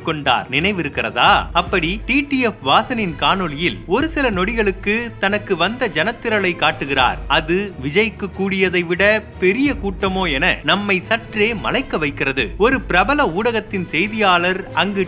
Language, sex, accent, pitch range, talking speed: Tamil, male, native, 170-210 Hz, 110 wpm